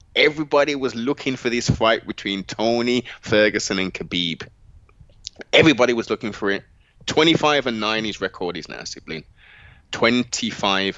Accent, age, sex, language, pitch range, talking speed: British, 20-39, male, English, 95-155 Hz, 135 wpm